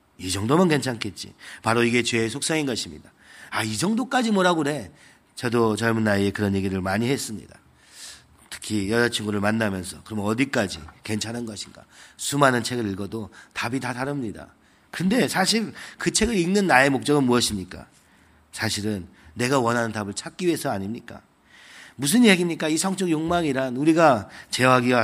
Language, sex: Korean, male